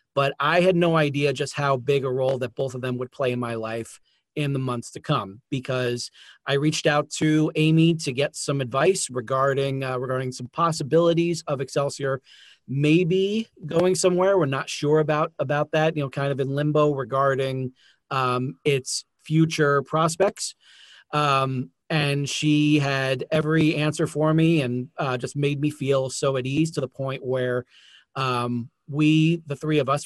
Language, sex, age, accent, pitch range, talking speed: English, male, 30-49, American, 130-155 Hz, 175 wpm